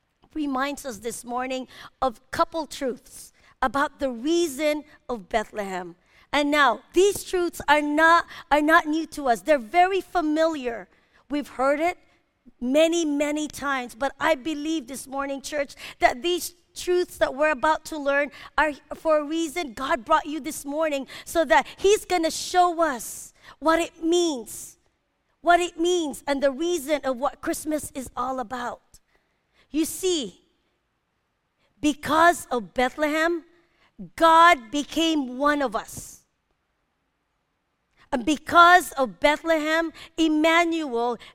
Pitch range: 270-330 Hz